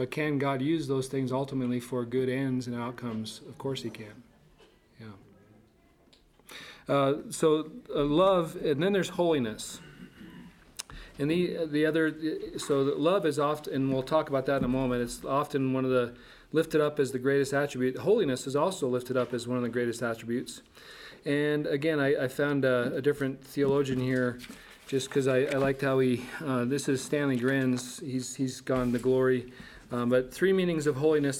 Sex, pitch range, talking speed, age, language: male, 130-155 Hz, 185 wpm, 40-59, English